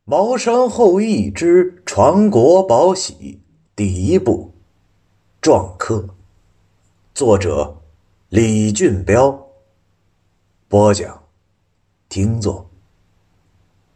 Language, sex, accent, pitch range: Chinese, male, native, 90-105 Hz